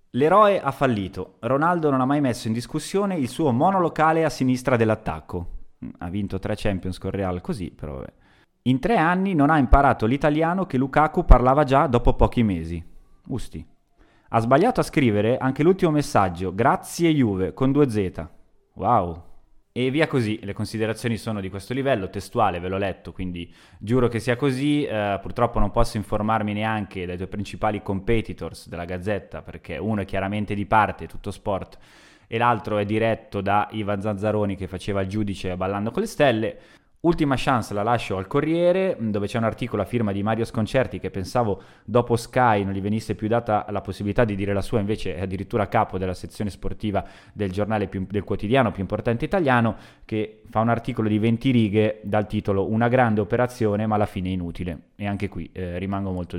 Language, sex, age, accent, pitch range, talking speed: Italian, male, 20-39, native, 100-130 Hz, 185 wpm